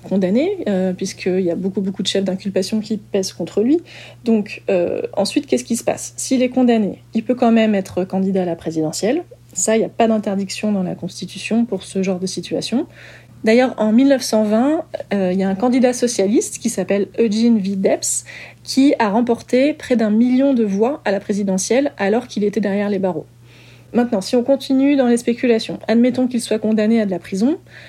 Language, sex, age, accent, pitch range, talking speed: French, female, 30-49, French, 195-235 Hz, 200 wpm